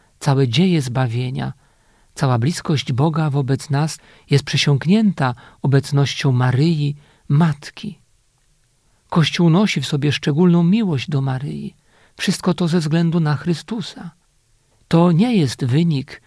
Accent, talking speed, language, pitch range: native, 115 wpm, Polish, 135-170 Hz